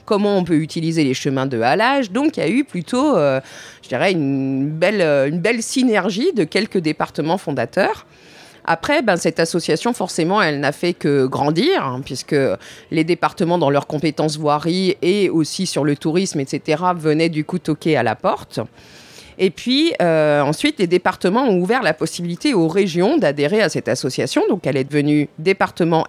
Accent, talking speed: French, 180 wpm